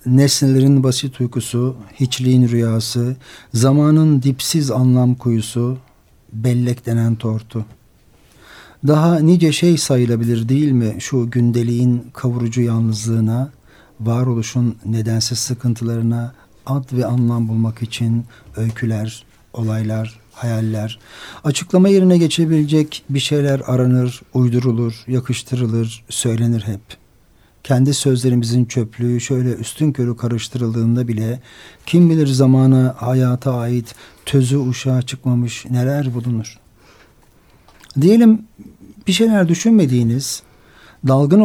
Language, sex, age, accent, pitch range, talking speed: Turkish, male, 50-69, native, 115-135 Hz, 95 wpm